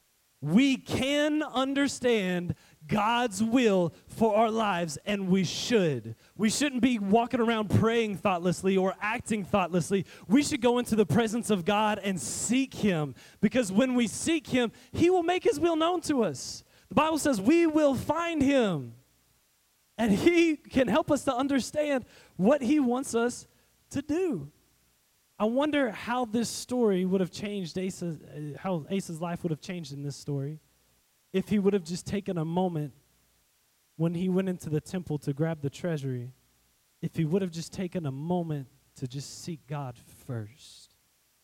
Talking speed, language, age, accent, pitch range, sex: 165 wpm, English, 20-39, American, 150-230 Hz, male